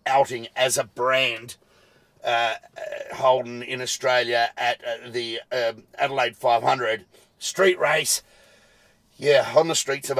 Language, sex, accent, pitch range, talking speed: English, male, Australian, 110-135 Hz, 130 wpm